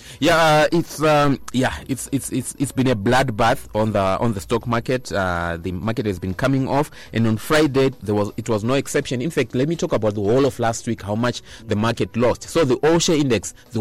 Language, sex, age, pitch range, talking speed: English, male, 30-49, 110-135 Hz, 245 wpm